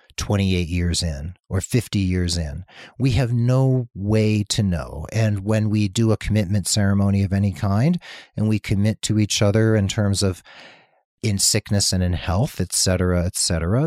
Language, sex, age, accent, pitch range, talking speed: English, male, 40-59, American, 95-120 Hz, 175 wpm